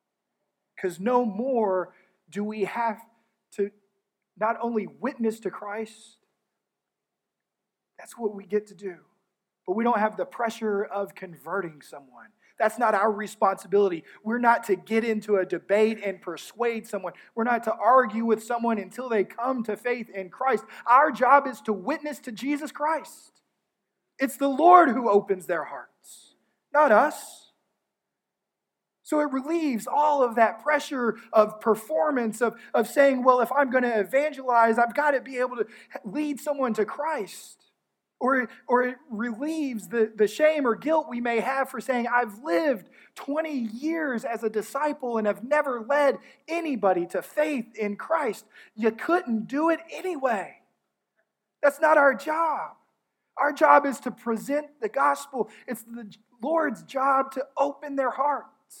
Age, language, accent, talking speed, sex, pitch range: 30-49, English, American, 155 wpm, male, 215-280 Hz